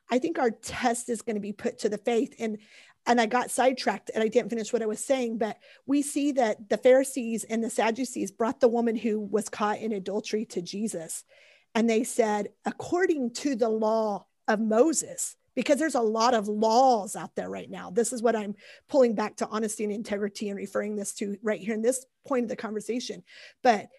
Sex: female